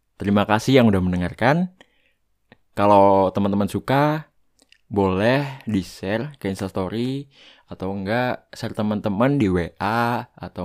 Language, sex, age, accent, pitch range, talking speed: Indonesian, male, 20-39, native, 95-135 Hz, 115 wpm